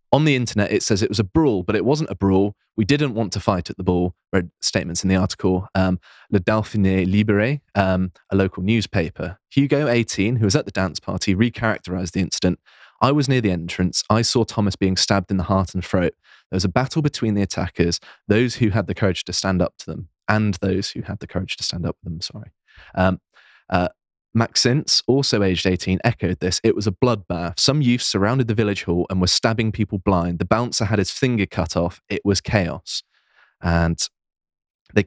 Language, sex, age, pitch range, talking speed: English, male, 20-39, 90-110 Hz, 215 wpm